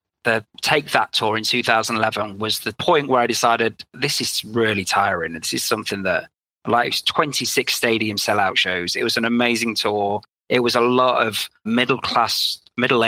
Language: English